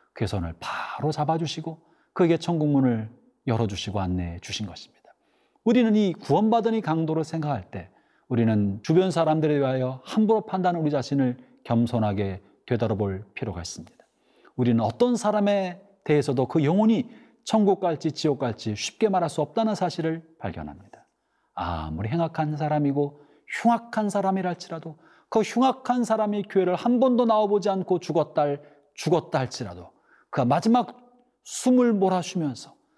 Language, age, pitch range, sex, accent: Korean, 40-59, 130-210 Hz, male, native